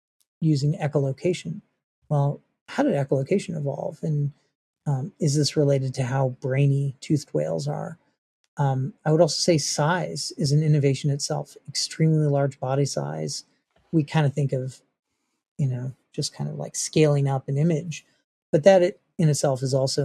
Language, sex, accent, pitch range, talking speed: English, male, American, 140-170 Hz, 160 wpm